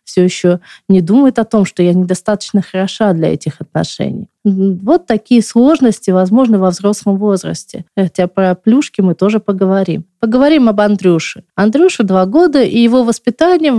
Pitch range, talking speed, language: 195-260 Hz, 150 wpm, Russian